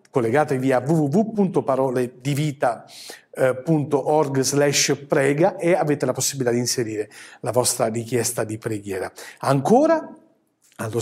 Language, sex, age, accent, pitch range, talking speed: Italian, male, 40-59, native, 135-190 Hz, 100 wpm